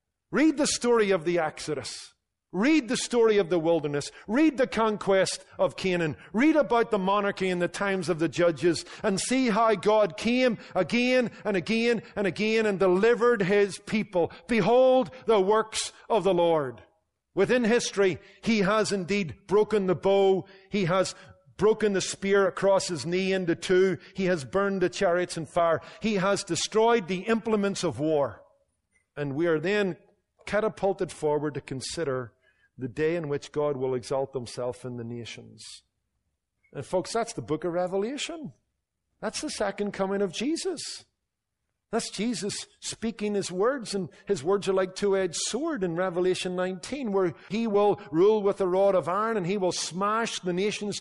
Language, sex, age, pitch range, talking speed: English, male, 50-69, 170-215 Hz, 165 wpm